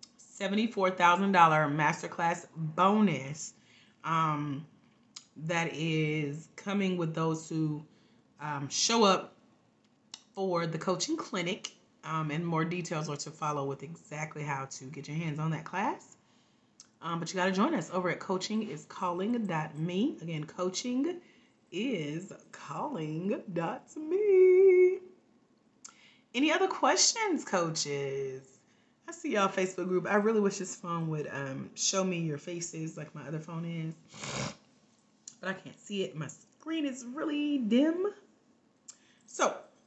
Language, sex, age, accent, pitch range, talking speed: English, female, 30-49, American, 155-225 Hz, 130 wpm